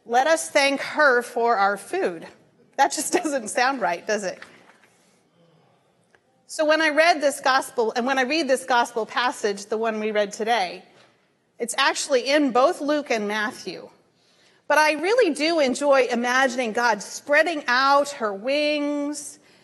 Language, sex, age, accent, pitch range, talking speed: English, female, 40-59, American, 235-300 Hz, 155 wpm